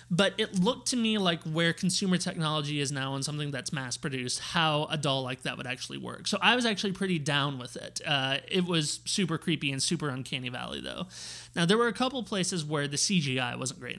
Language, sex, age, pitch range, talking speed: English, male, 30-49, 135-180 Hz, 225 wpm